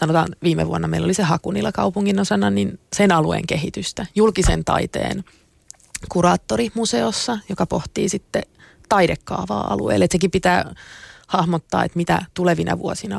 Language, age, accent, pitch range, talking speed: Finnish, 30-49, native, 160-185 Hz, 135 wpm